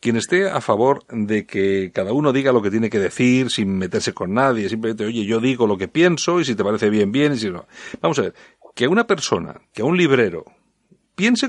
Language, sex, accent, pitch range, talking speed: Spanish, male, Spanish, 125-190 Hz, 240 wpm